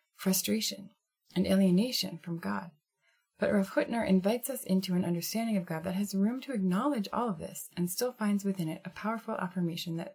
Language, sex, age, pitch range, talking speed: English, female, 20-39, 175-215 Hz, 185 wpm